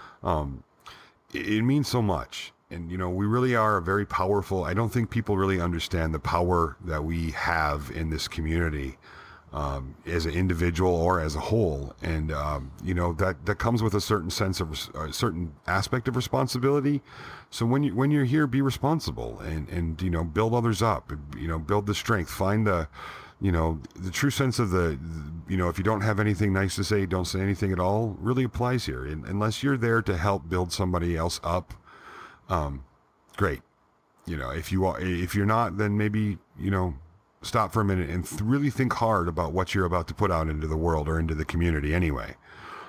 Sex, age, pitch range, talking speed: male, 40-59, 80-105 Hz, 210 wpm